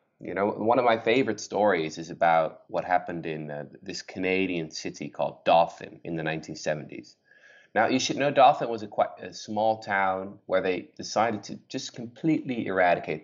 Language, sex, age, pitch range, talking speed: English, male, 20-39, 85-110 Hz, 170 wpm